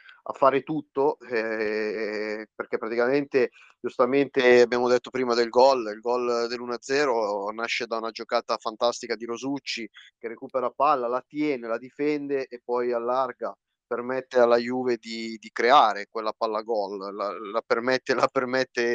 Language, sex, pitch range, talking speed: Italian, male, 115-135 Hz, 145 wpm